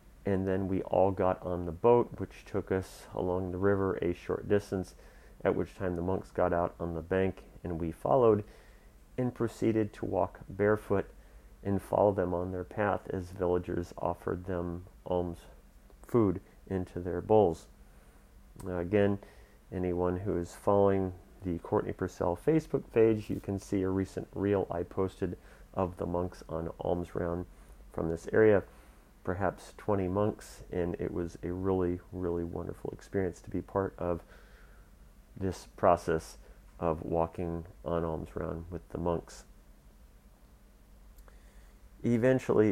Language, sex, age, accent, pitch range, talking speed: English, male, 40-59, American, 85-100 Hz, 145 wpm